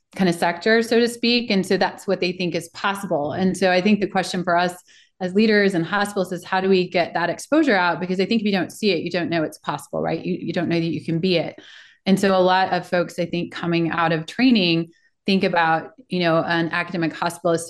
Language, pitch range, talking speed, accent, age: English, 170-190 Hz, 260 wpm, American, 30-49